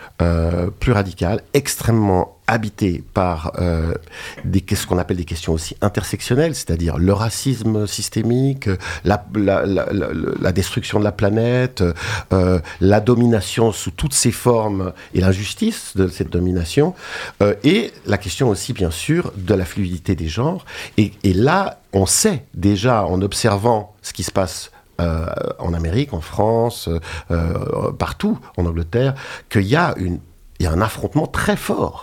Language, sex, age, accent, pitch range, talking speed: French, male, 50-69, French, 90-120 Hz, 155 wpm